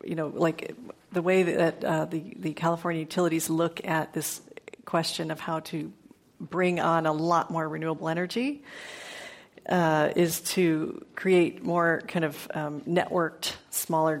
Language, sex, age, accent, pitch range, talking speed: English, female, 40-59, American, 160-180 Hz, 150 wpm